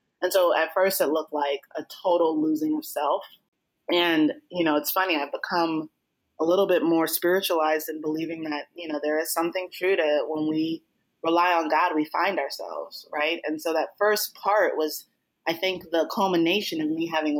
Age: 20-39